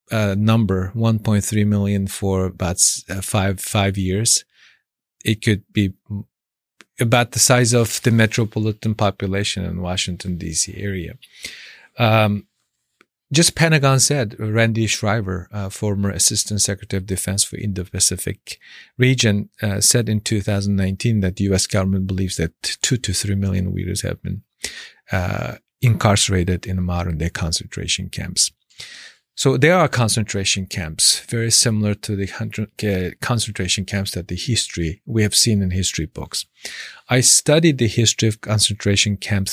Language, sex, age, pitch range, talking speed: English, male, 40-59, 95-115 Hz, 145 wpm